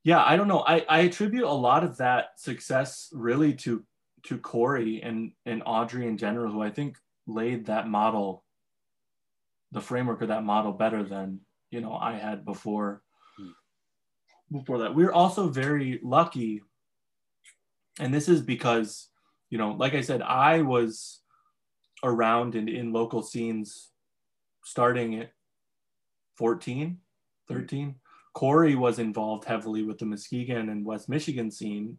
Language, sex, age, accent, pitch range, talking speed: English, male, 20-39, American, 110-130 Hz, 145 wpm